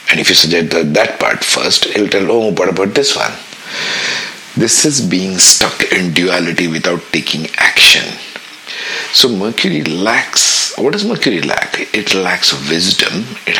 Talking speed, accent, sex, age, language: 155 wpm, Indian, male, 50-69, English